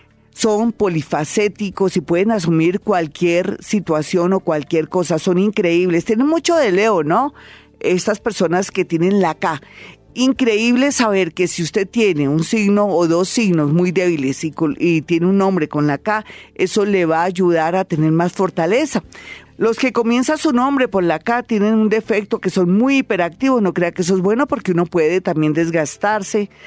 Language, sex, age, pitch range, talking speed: Spanish, female, 40-59, 170-215 Hz, 180 wpm